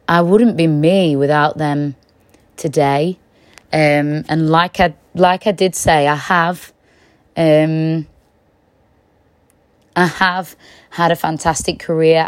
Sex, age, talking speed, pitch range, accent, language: female, 20-39, 105 wpm, 155-175 Hz, British, English